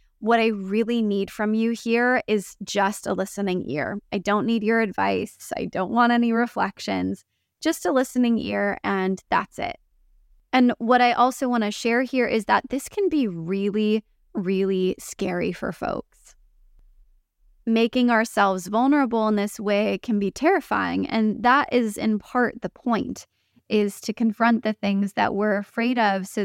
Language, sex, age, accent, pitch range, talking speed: English, female, 20-39, American, 200-235 Hz, 165 wpm